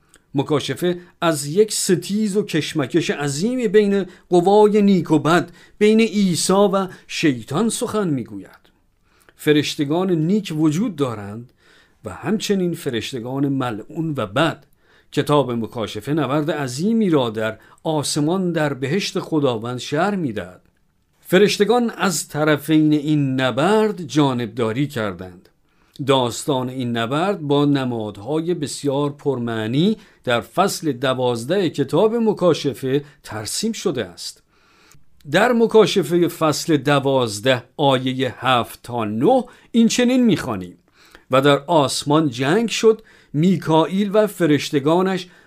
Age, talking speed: 50-69, 110 wpm